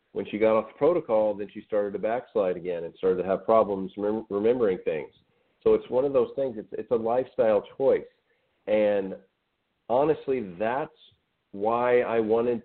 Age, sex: 40-59, male